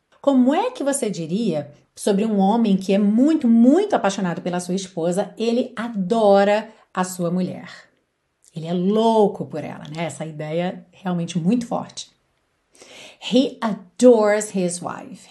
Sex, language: female, Portuguese